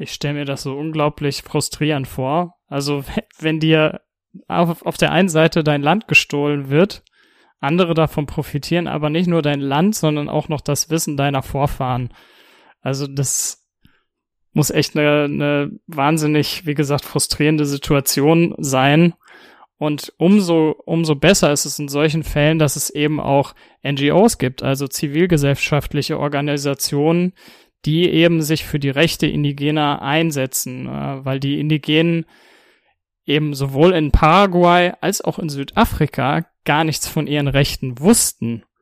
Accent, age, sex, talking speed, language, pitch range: German, 20-39, male, 140 wpm, German, 140-165 Hz